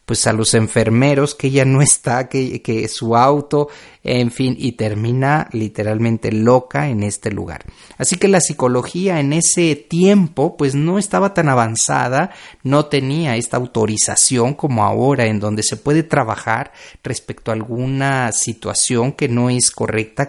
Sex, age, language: male, 40-59, Spanish